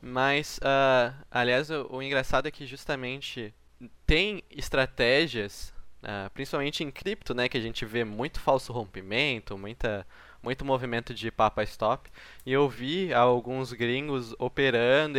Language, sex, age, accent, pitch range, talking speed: Portuguese, male, 20-39, Brazilian, 125-150 Hz, 125 wpm